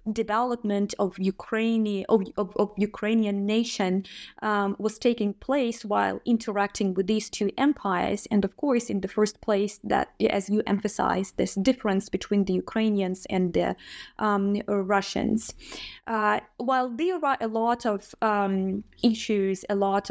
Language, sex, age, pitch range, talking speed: English, female, 20-39, 195-230 Hz, 145 wpm